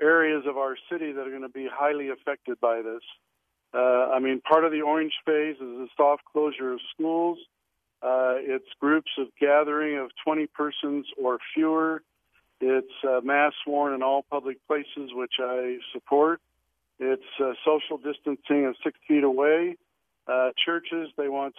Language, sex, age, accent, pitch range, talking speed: English, male, 50-69, American, 135-155 Hz, 165 wpm